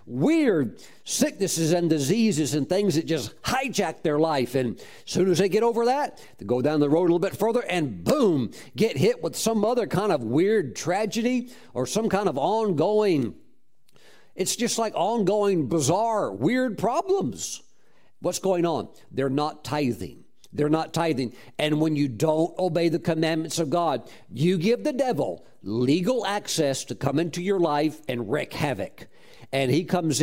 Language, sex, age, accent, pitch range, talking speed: English, male, 50-69, American, 145-200 Hz, 170 wpm